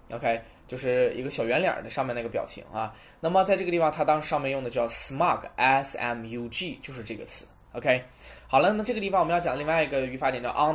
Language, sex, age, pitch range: Chinese, male, 10-29, 125-170 Hz